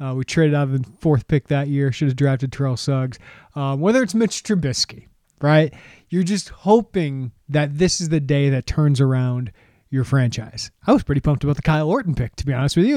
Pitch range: 130-165 Hz